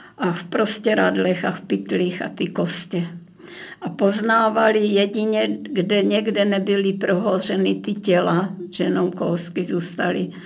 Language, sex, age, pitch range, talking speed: Czech, female, 60-79, 170-195 Hz, 125 wpm